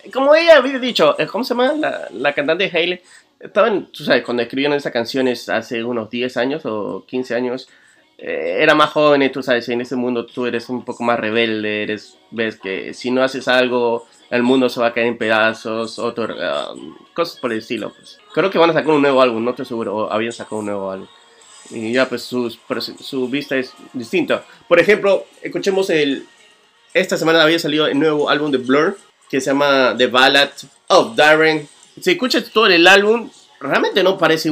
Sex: male